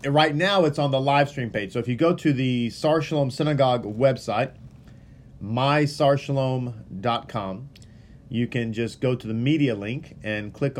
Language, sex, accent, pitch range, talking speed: English, male, American, 115-155 Hz, 155 wpm